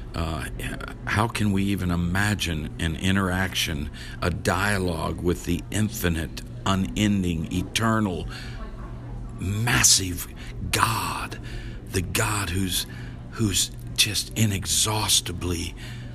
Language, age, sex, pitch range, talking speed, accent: English, 50-69, male, 90-105 Hz, 85 wpm, American